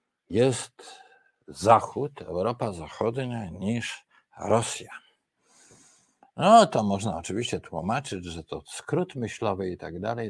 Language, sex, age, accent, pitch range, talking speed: Polish, male, 50-69, native, 95-135 Hz, 105 wpm